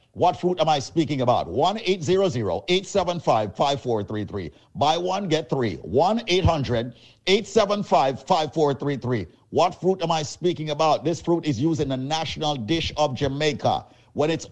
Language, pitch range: English, 140-185 Hz